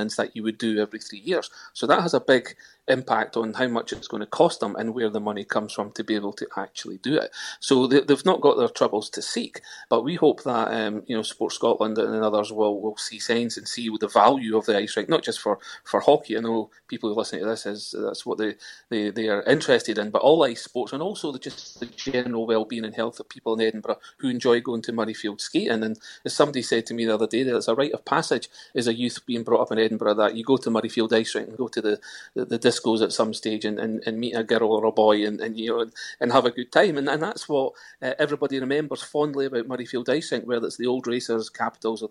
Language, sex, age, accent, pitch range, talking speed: English, male, 30-49, British, 110-125 Hz, 265 wpm